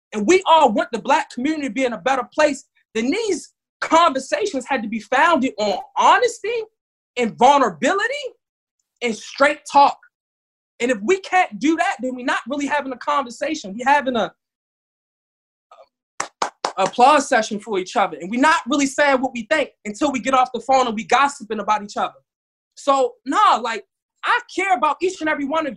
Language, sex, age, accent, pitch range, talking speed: English, male, 20-39, American, 225-305 Hz, 185 wpm